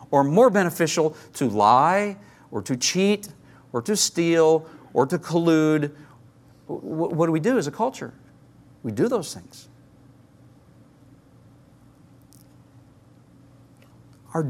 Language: English